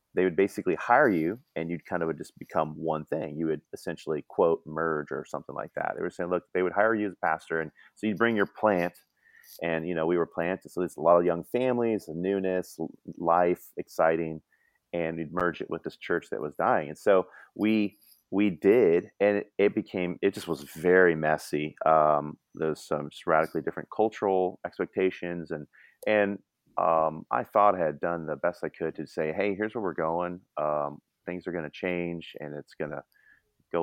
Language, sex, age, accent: English, male, 30-49, American